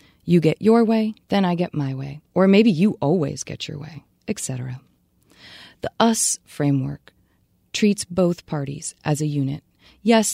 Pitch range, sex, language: 150-205 Hz, female, English